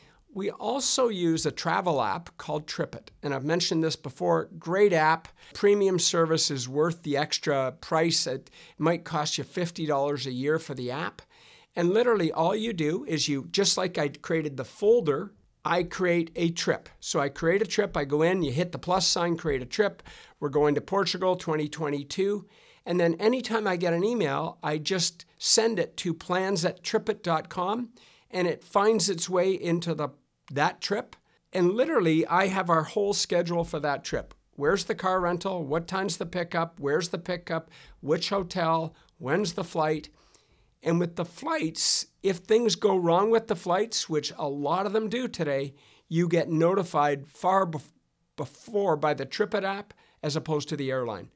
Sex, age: male, 50-69